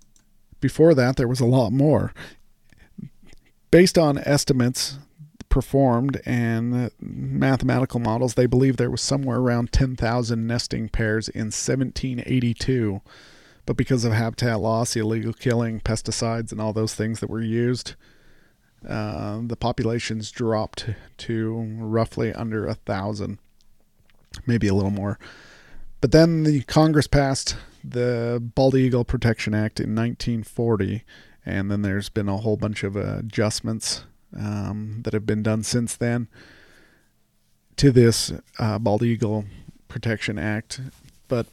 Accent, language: American, English